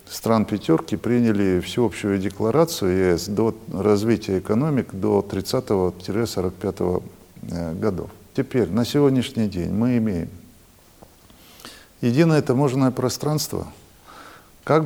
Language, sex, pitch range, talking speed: Russian, male, 95-125 Hz, 90 wpm